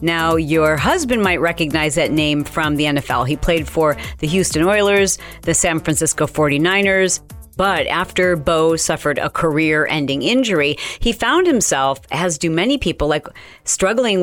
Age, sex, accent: 40-59, female, American